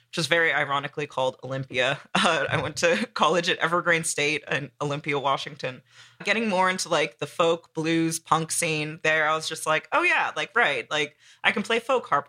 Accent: American